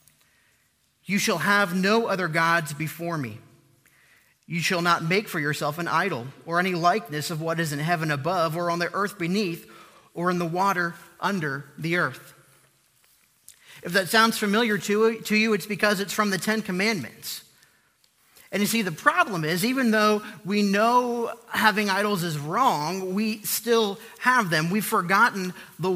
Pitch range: 155-205 Hz